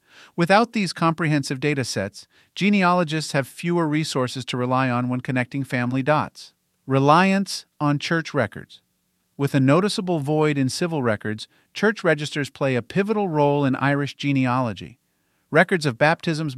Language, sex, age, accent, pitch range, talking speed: English, male, 50-69, American, 130-165 Hz, 140 wpm